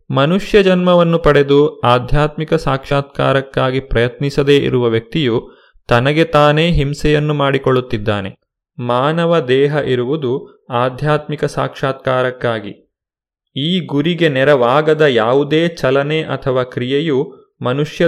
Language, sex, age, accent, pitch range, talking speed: Kannada, male, 30-49, native, 130-165 Hz, 85 wpm